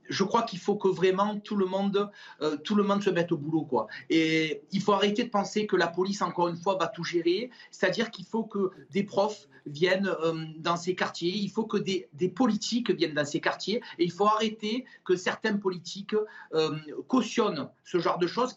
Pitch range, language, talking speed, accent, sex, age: 185-225 Hz, French, 205 wpm, French, male, 40-59